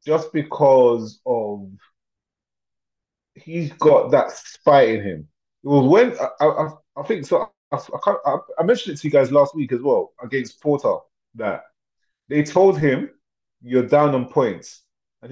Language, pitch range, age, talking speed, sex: English, 130-180 Hz, 30-49, 155 wpm, male